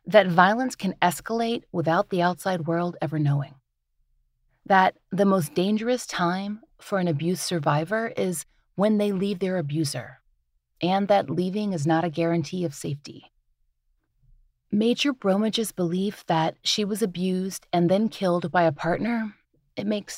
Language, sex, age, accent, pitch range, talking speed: English, female, 30-49, American, 150-205 Hz, 145 wpm